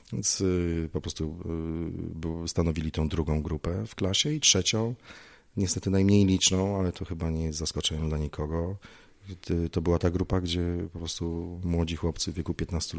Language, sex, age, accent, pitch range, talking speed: Polish, male, 30-49, native, 80-95 Hz, 155 wpm